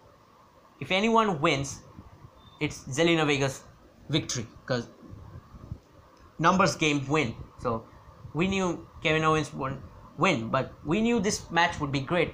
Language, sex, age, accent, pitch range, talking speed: English, male, 20-39, Indian, 135-165 Hz, 130 wpm